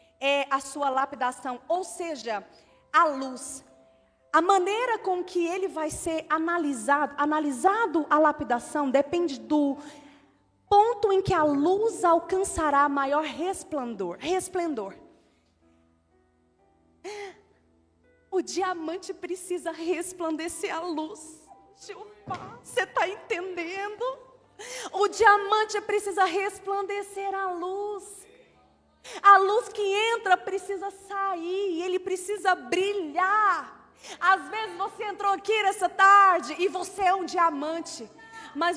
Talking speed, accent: 105 wpm, Brazilian